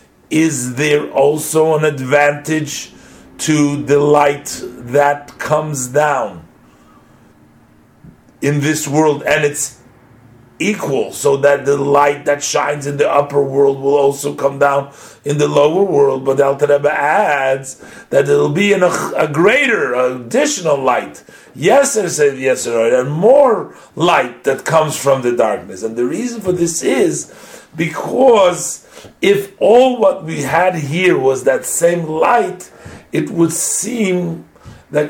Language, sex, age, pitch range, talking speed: English, male, 50-69, 140-180 Hz, 140 wpm